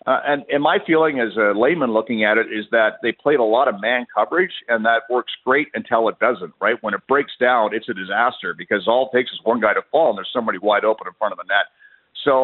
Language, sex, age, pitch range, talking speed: English, male, 50-69, 105-135 Hz, 265 wpm